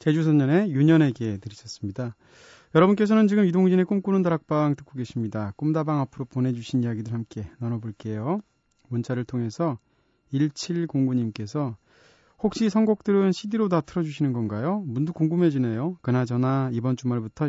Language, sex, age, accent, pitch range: Korean, male, 30-49, native, 120-165 Hz